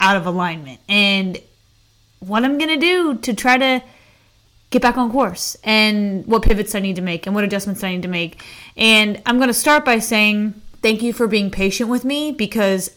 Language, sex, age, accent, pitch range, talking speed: English, female, 20-39, American, 195-245 Hz, 210 wpm